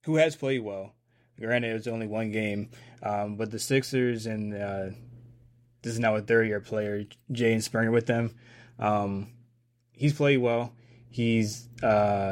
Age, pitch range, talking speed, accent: 20-39, 105-120 Hz, 155 wpm, American